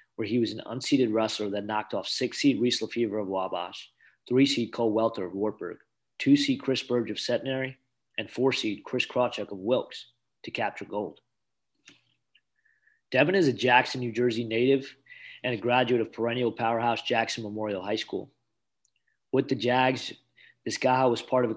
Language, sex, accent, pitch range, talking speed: English, male, American, 105-125 Hz, 175 wpm